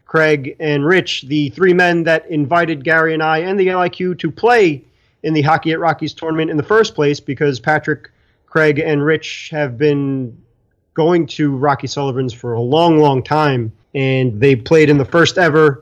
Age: 30-49